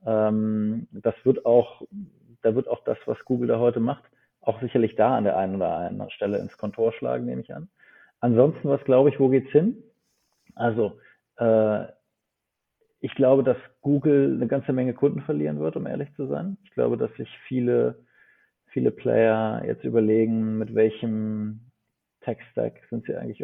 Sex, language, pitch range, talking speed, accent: male, German, 110-130 Hz, 165 wpm, German